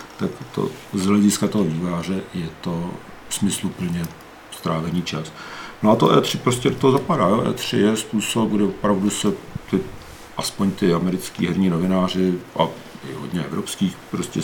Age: 50-69